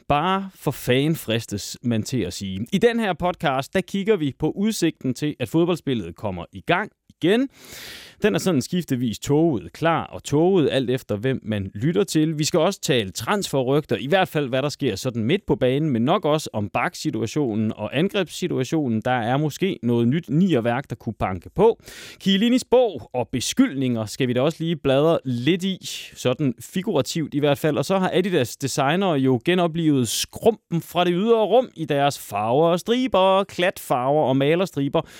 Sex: male